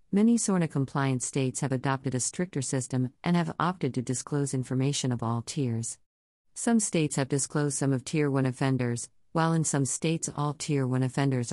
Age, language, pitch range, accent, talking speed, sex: 50-69, English, 130-150 Hz, American, 175 wpm, female